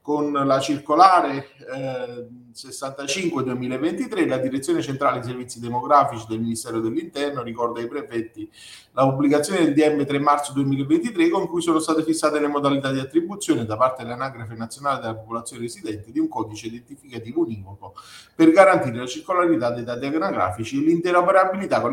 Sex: male